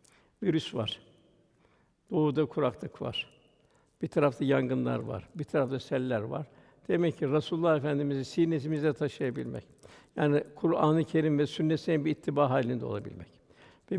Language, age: Turkish, 60-79